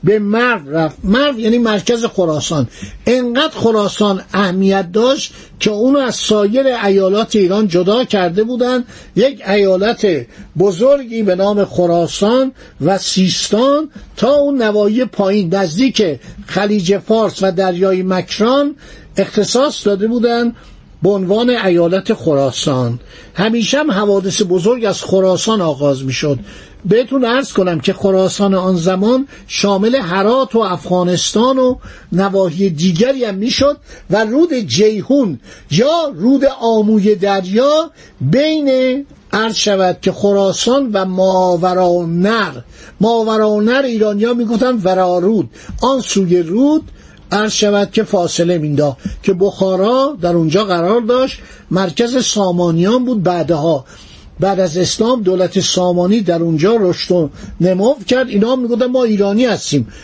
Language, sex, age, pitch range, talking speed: Persian, male, 50-69, 185-240 Hz, 125 wpm